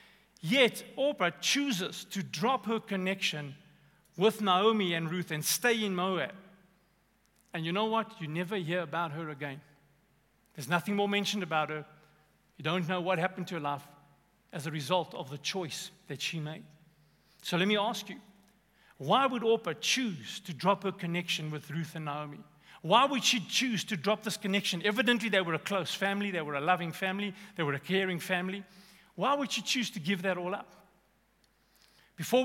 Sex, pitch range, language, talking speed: male, 165-210 Hz, English, 185 wpm